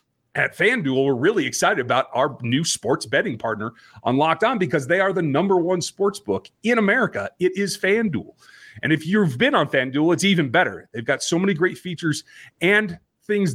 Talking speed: 195 wpm